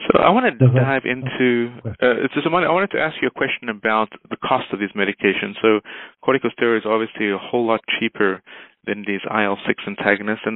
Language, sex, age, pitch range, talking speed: English, male, 30-49, 100-110 Hz, 210 wpm